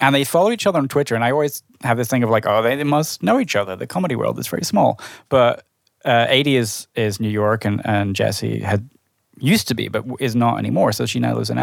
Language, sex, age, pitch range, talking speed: English, male, 20-39, 110-135 Hz, 260 wpm